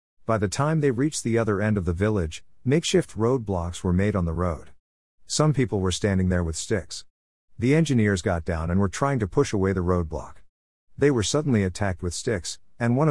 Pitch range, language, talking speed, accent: 85-115 Hz, English, 205 wpm, American